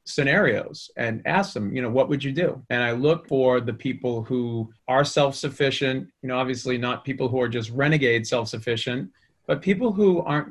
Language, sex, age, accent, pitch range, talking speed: English, male, 30-49, American, 120-140 Hz, 190 wpm